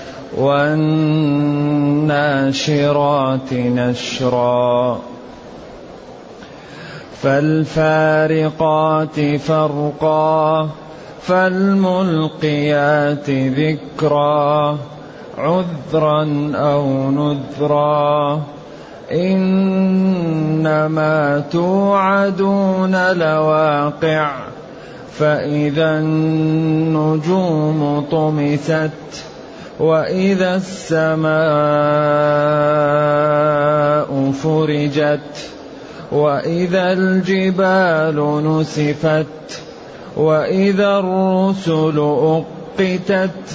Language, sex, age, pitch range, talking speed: Arabic, male, 30-49, 145-160 Hz, 35 wpm